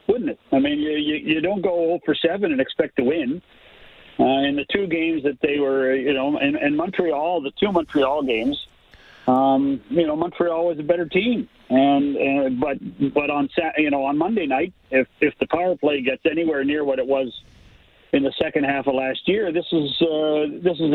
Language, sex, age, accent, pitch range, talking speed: English, male, 50-69, American, 145-175 Hz, 210 wpm